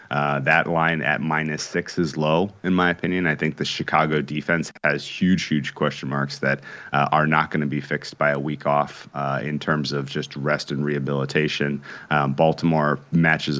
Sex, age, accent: male, 30-49, American